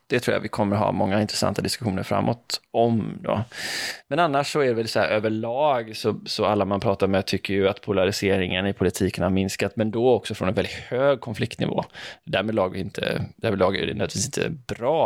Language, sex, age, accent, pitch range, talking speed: Swedish, male, 20-39, native, 100-125 Hz, 210 wpm